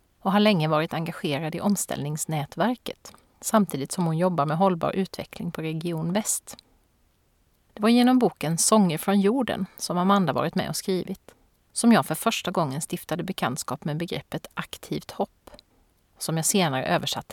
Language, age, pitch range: Swedish, 30-49, 165-215 Hz